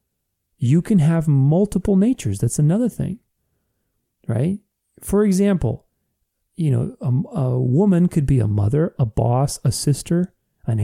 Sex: male